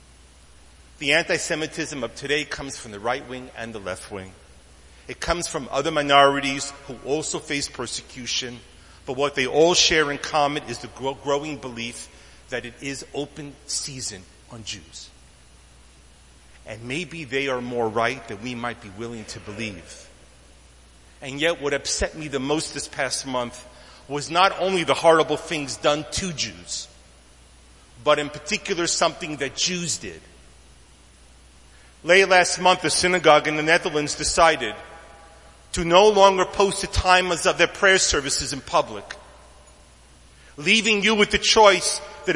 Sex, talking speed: male, 150 wpm